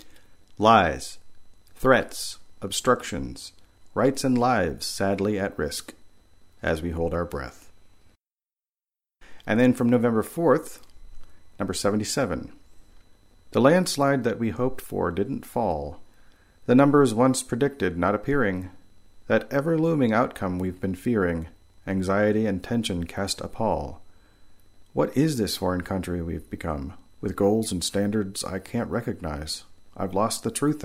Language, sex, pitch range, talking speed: English, male, 90-110 Hz, 125 wpm